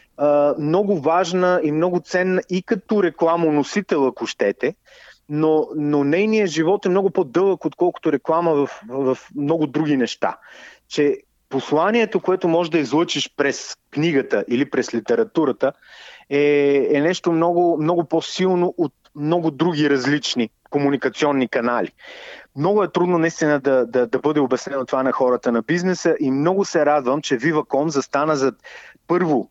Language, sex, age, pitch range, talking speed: Bulgarian, male, 30-49, 130-175 Hz, 145 wpm